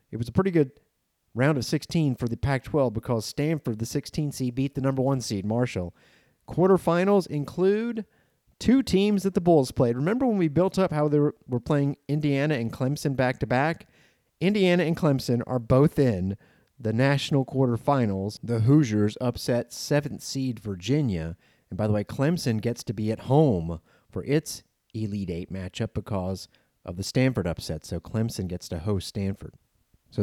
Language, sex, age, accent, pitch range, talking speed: English, male, 30-49, American, 100-140 Hz, 170 wpm